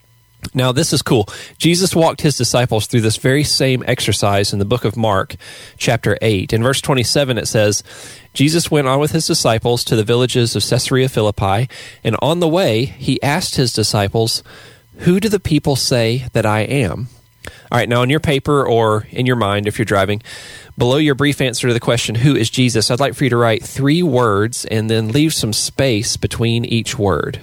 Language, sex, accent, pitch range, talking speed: English, male, American, 110-140 Hz, 200 wpm